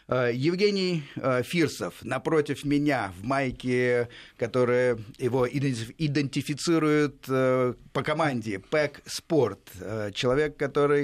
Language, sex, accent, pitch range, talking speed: Russian, male, native, 115-145 Hz, 90 wpm